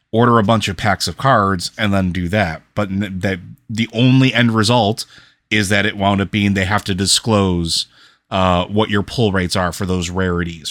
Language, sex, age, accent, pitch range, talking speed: English, male, 30-49, American, 90-105 Hz, 200 wpm